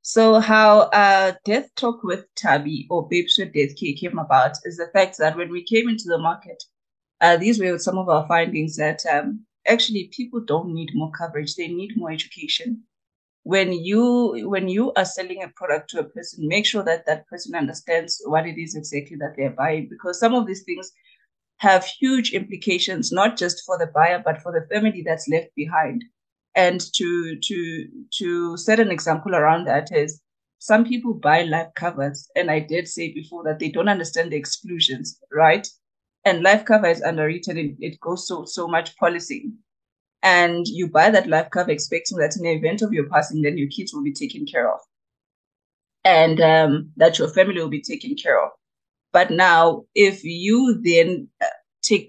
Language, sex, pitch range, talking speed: English, female, 160-205 Hz, 190 wpm